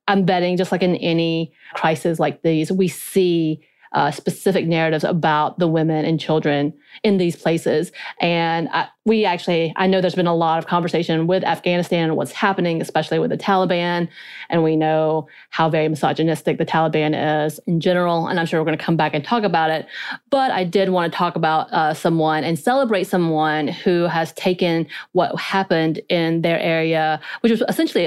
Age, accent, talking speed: 30-49, American, 190 wpm